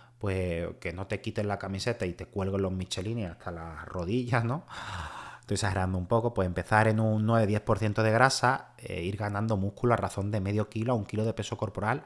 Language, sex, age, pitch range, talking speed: Spanish, male, 30-49, 95-120 Hz, 210 wpm